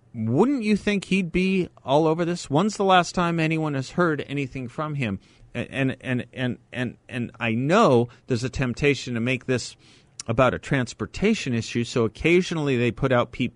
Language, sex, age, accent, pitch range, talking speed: English, male, 40-59, American, 105-145 Hz, 185 wpm